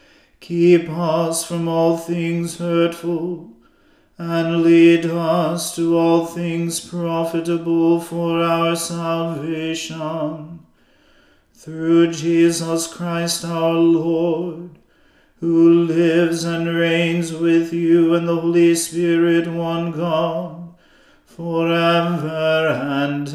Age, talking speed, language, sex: 40-59, 90 wpm, English, male